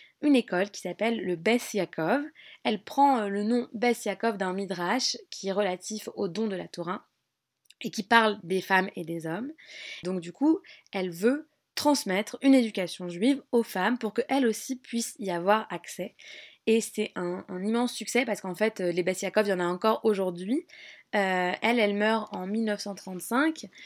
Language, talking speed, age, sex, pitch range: French, 175 wpm, 20-39, female, 190-235 Hz